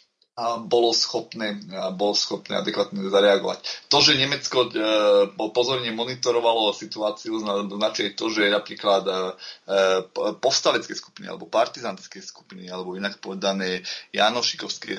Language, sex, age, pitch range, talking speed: Slovak, male, 20-39, 95-105 Hz, 110 wpm